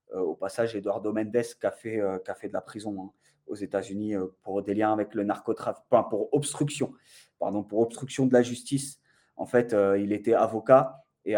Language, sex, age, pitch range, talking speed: French, male, 20-39, 105-125 Hz, 195 wpm